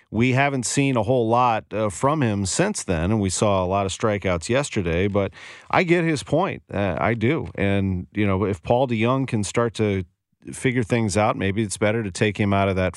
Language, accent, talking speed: English, American, 220 wpm